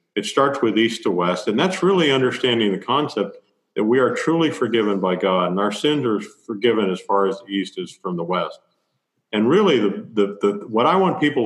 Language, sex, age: English, male, 50-69